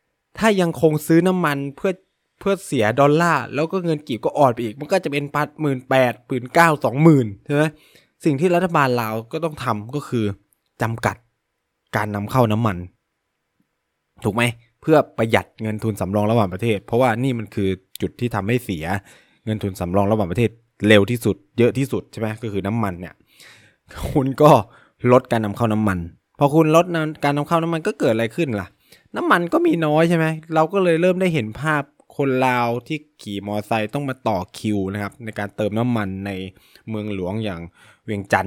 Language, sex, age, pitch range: Thai, male, 20-39, 105-140 Hz